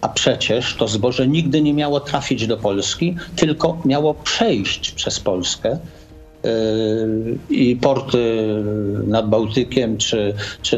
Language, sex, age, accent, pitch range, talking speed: Polish, male, 50-69, native, 115-165 Hz, 120 wpm